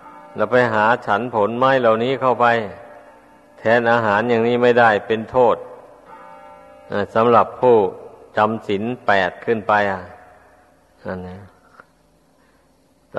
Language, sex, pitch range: Thai, male, 105-120 Hz